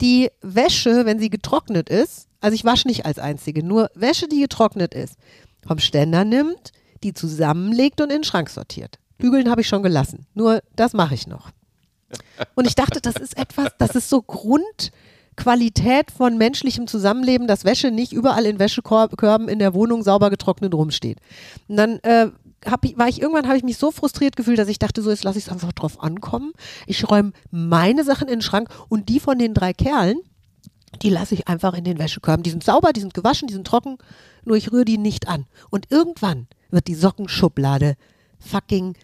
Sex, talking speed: female, 195 wpm